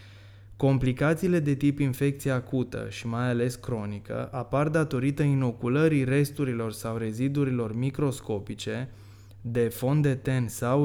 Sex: male